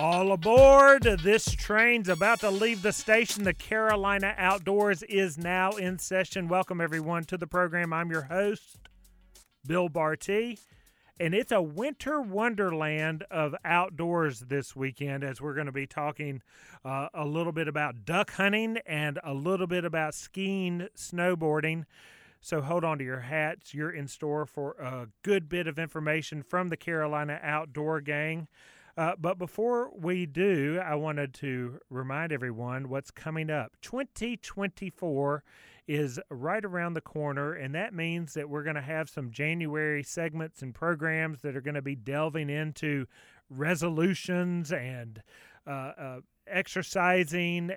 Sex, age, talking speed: male, 40-59, 150 wpm